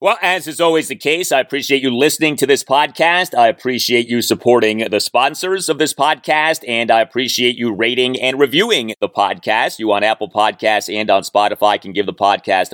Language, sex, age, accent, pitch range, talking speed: English, male, 30-49, American, 105-155 Hz, 200 wpm